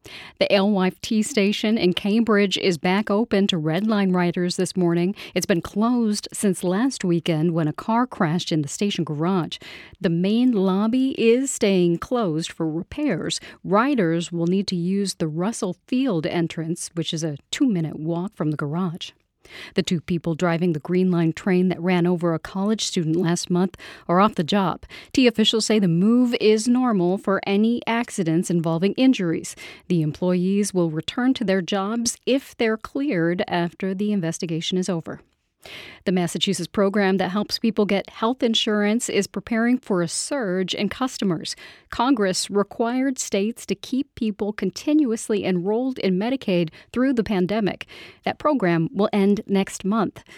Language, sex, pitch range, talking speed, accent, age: English, female, 175-220 Hz, 160 wpm, American, 40-59